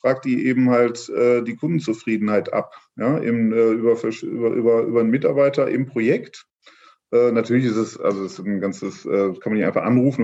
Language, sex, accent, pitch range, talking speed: English, male, German, 110-125 Hz, 195 wpm